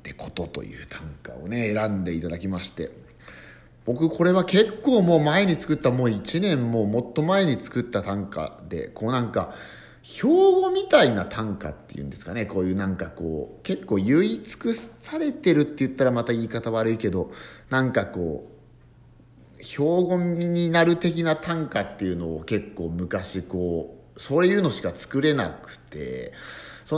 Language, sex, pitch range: Japanese, male, 95-155 Hz